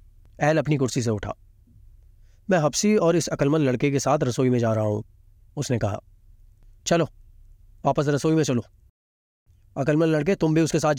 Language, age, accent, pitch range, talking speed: Hindi, 30-49, native, 100-150 Hz, 170 wpm